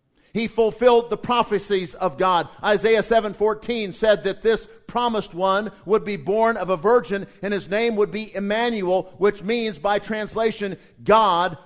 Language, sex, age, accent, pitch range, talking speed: English, male, 50-69, American, 190-230 Hz, 160 wpm